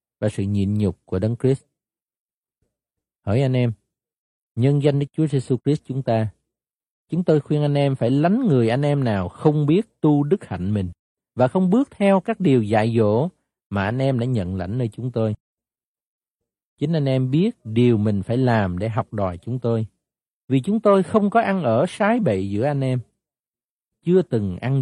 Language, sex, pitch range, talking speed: Vietnamese, male, 110-155 Hz, 195 wpm